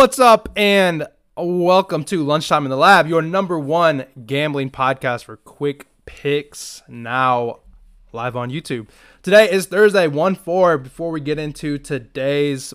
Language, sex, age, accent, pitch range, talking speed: English, male, 20-39, American, 120-160 Hz, 140 wpm